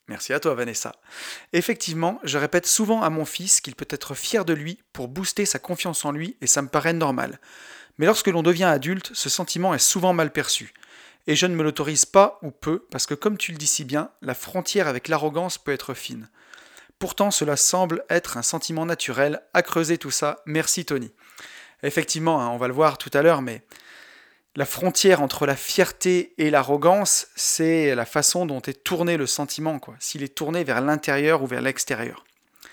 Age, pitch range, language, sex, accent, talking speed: 30-49, 145-185 Hz, French, male, French, 200 wpm